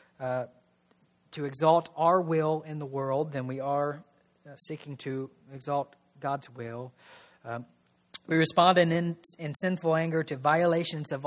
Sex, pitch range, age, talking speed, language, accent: male, 130-155 Hz, 40-59, 150 wpm, English, American